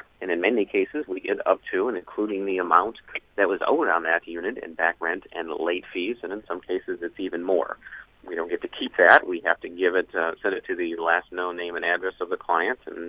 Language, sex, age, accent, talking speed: English, male, 40-59, American, 255 wpm